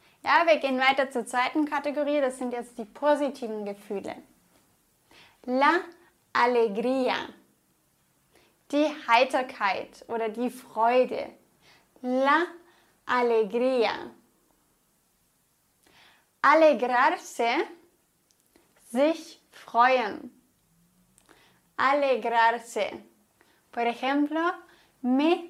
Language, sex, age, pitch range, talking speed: English, female, 10-29, 240-300 Hz, 70 wpm